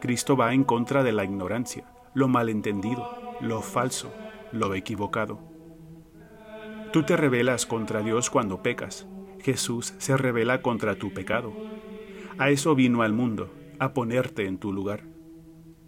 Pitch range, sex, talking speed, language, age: 110-160 Hz, male, 135 wpm, Spanish, 40-59